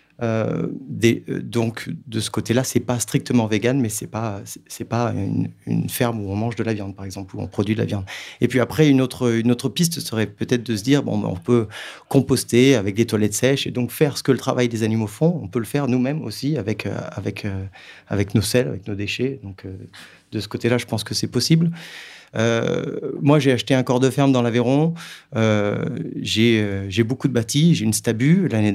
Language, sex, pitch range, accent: French, male, 105-135 Hz, French